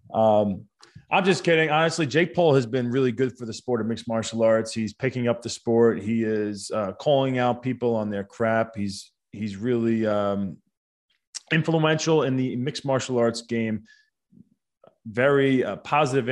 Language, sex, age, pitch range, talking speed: English, male, 20-39, 115-150 Hz, 170 wpm